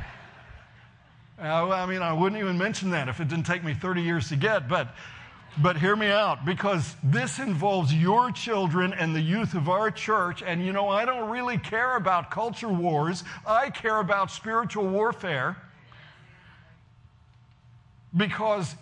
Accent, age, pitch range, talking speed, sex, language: American, 60-79, 155-210 Hz, 155 wpm, male, English